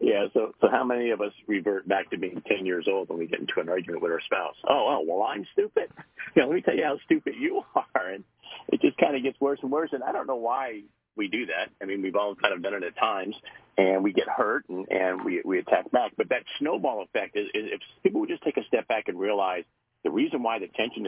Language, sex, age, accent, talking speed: English, male, 50-69, American, 275 wpm